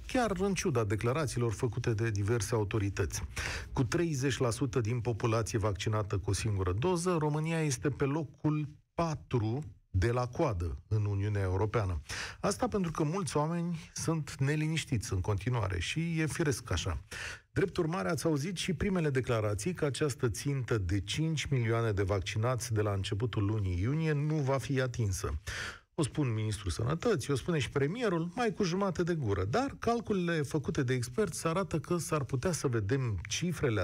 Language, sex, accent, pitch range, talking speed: Romanian, male, native, 110-170 Hz, 160 wpm